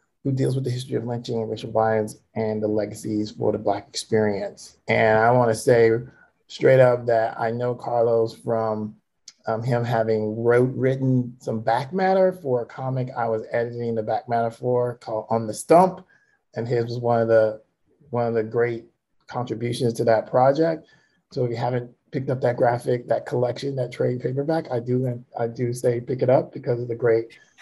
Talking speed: 195 wpm